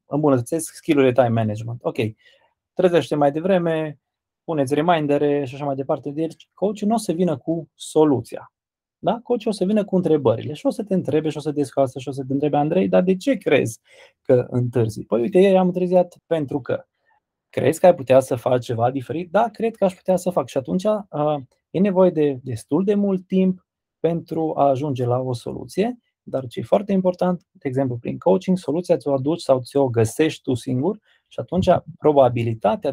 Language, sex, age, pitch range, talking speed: Romanian, male, 20-39, 130-180 Hz, 195 wpm